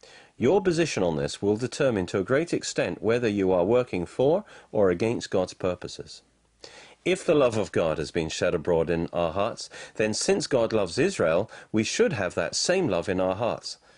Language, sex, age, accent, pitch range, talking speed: English, male, 40-59, British, 95-160 Hz, 195 wpm